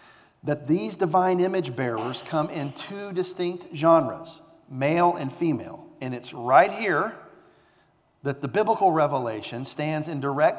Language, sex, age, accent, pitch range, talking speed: English, male, 40-59, American, 135-175 Hz, 135 wpm